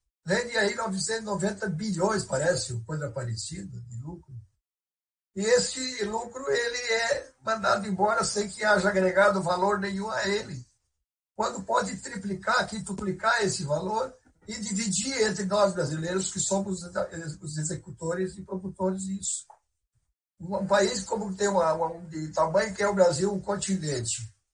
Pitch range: 145-200 Hz